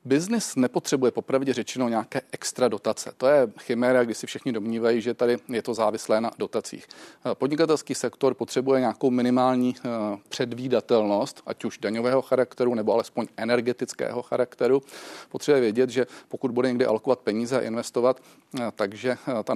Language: Czech